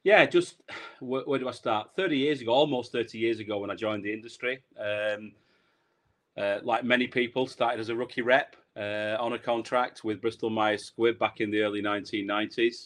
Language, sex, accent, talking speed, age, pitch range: English, male, British, 185 wpm, 30-49, 100-115 Hz